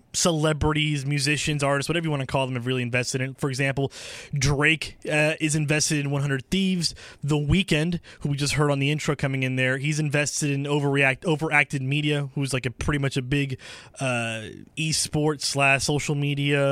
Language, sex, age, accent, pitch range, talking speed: English, male, 20-39, American, 135-170 Hz, 185 wpm